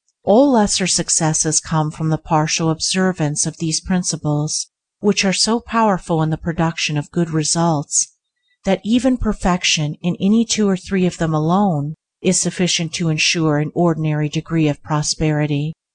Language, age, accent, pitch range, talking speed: English, 50-69, American, 155-195 Hz, 155 wpm